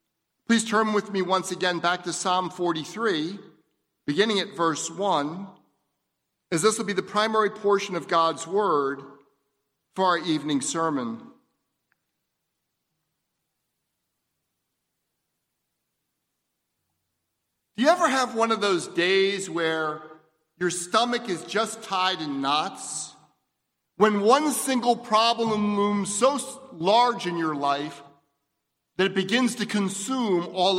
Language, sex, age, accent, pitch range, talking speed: English, male, 50-69, American, 170-220 Hz, 115 wpm